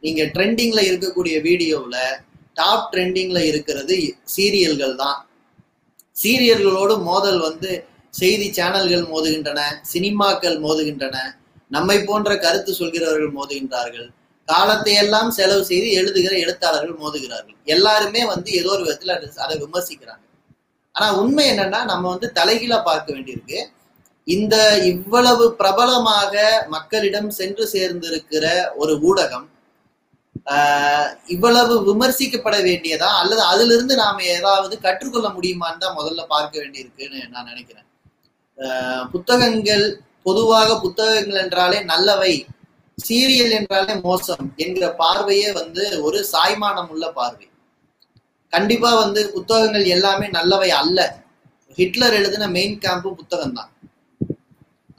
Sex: male